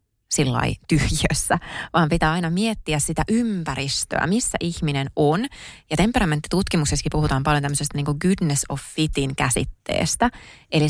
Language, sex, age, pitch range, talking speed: Finnish, female, 20-39, 145-190 Hz, 120 wpm